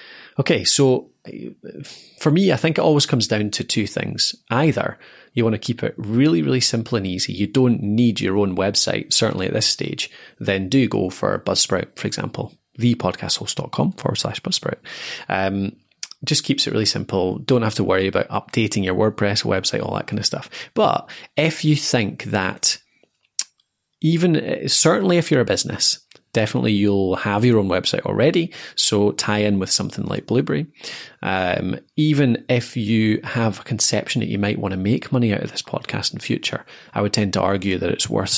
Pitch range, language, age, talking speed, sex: 100-135 Hz, English, 20-39, 185 wpm, male